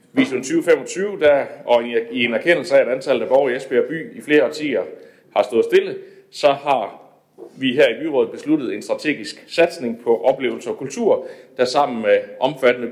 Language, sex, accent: Danish, male, native